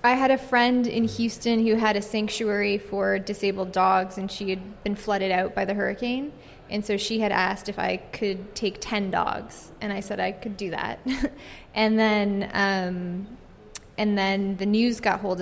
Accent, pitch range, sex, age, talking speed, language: American, 195-215 Hz, female, 20-39, 190 wpm, English